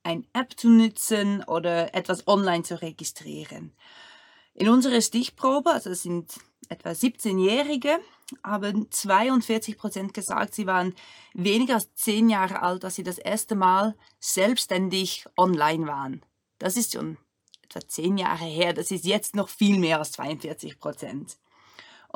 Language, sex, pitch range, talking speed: German, female, 185-230 Hz, 135 wpm